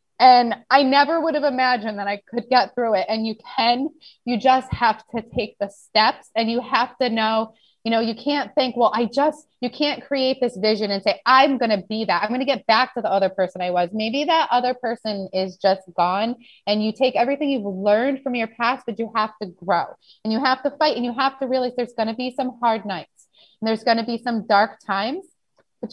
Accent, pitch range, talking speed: American, 205-255 Hz, 245 wpm